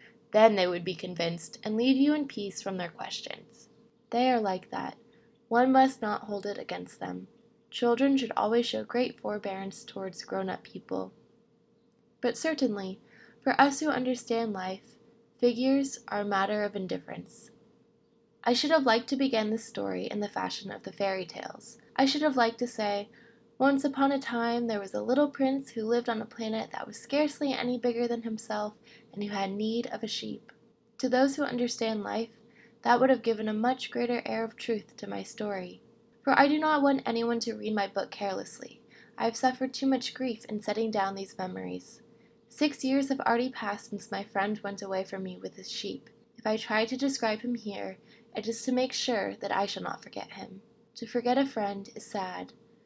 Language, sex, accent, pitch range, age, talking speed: English, female, American, 210-245 Hz, 20-39, 200 wpm